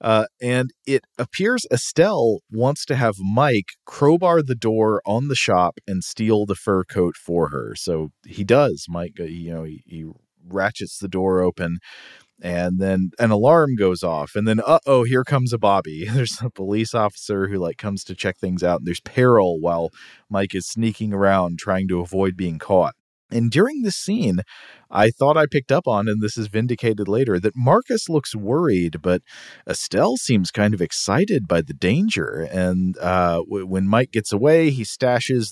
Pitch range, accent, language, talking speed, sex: 95-125 Hz, American, English, 180 wpm, male